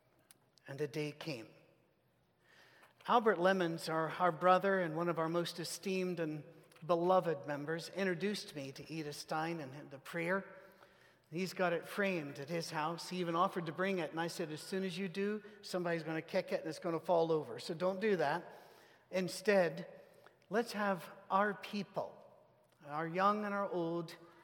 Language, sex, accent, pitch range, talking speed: English, male, American, 160-195 Hz, 175 wpm